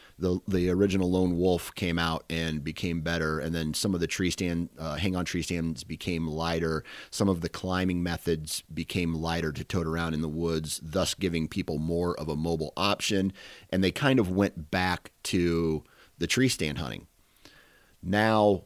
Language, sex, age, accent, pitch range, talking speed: English, male, 30-49, American, 85-100 Hz, 185 wpm